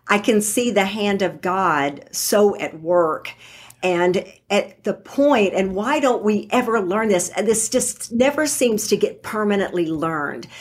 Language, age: English, 50-69